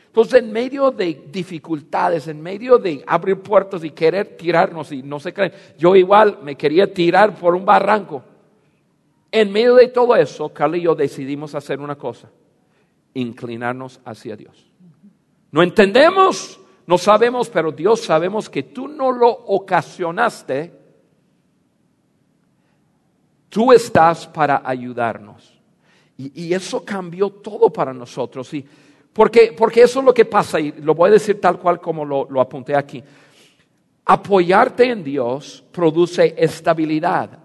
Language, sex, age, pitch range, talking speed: Spanish, male, 50-69, 150-210 Hz, 140 wpm